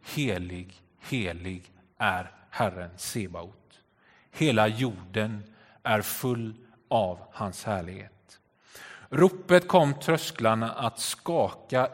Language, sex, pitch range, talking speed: Swedish, male, 105-160 Hz, 85 wpm